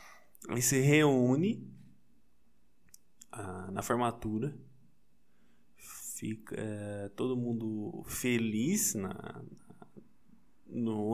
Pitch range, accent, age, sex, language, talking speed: 115-150 Hz, Brazilian, 20-39, male, Portuguese, 60 wpm